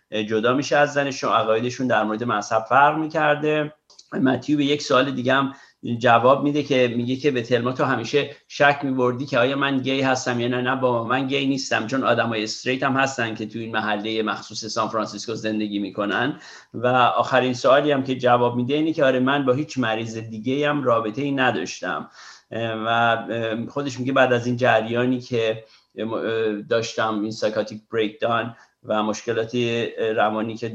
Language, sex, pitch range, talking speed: Persian, male, 115-140 Hz, 170 wpm